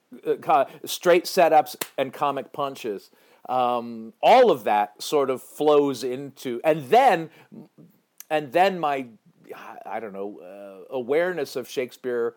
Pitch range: 115-155 Hz